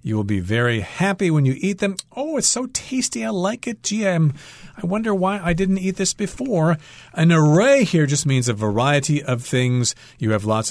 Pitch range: 110-155 Hz